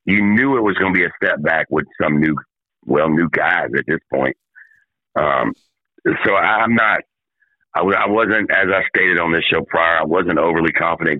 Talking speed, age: 210 wpm, 60-79